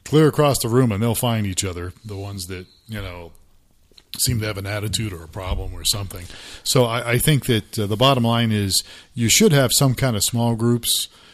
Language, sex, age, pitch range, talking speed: English, male, 40-59, 95-125 Hz, 220 wpm